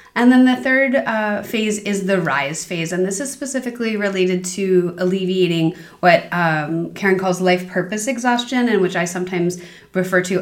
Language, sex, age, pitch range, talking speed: English, female, 30-49, 170-200 Hz, 175 wpm